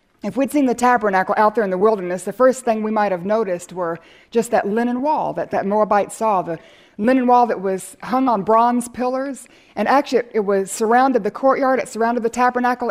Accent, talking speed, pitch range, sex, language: American, 220 wpm, 200-255 Hz, female, English